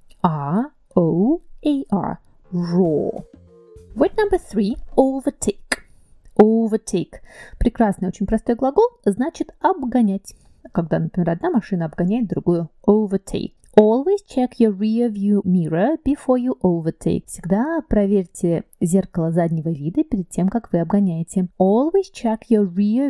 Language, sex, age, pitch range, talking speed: Russian, female, 30-49, 175-245 Hz, 110 wpm